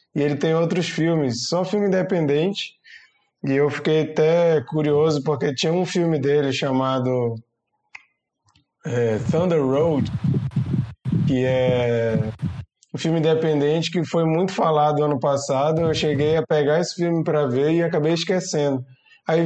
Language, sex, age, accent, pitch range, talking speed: Portuguese, male, 20-39, Brazilian, 140-165 Hz, 135 wpm